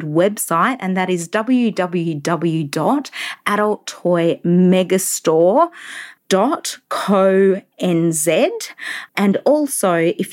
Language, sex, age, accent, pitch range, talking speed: English, female, 30-49, Australian, 185-235 Hz, 65 wpm